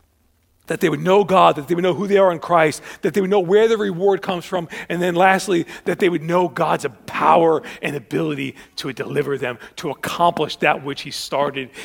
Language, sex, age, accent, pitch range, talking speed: English, male, 40-59, American, 185-270 Hz, 220 wpm